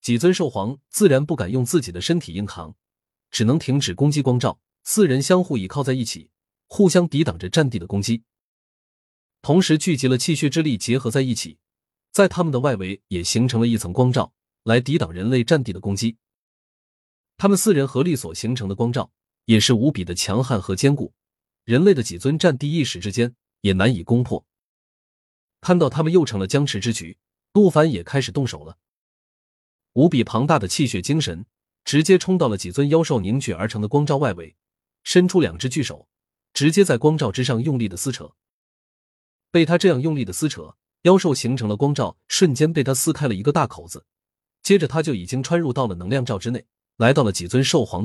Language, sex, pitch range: Chinese, male, 105-155 Hz